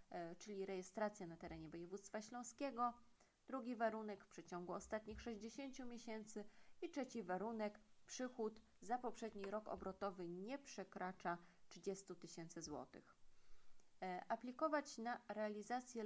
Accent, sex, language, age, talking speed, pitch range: native, female, Polish, 20-39, 110 wpm, 195-245 Hz